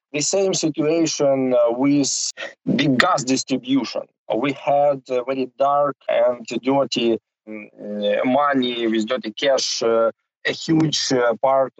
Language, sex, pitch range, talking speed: English, male, 120-160 Hz, 120 wpm